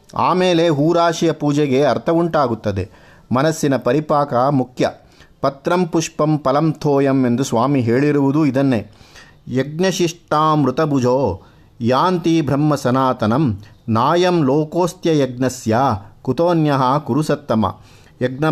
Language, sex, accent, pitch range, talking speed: Kannada, male, native, 130-165 Hz, 80 wpm